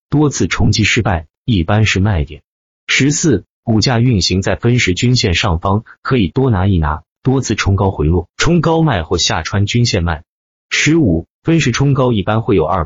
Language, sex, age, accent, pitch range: Chinese, male, 30-49, native, 90-125 Hz